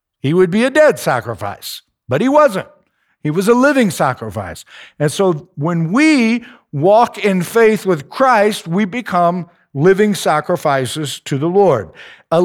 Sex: male